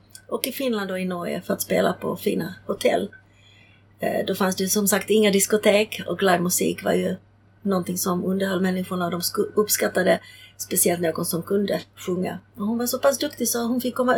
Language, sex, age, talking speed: Swedish, female, 30-49, 190 wpm